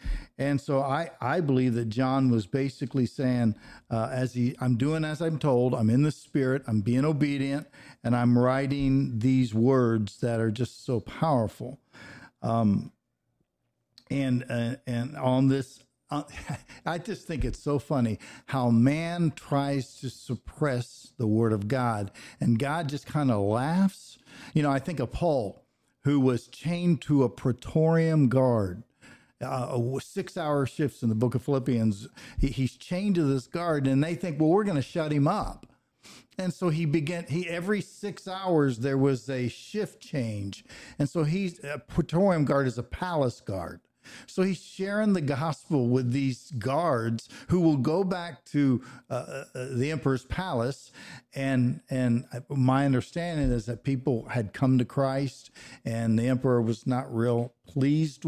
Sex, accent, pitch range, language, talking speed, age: male, American, 125-155 Hz, English, 165 wpm, 50-69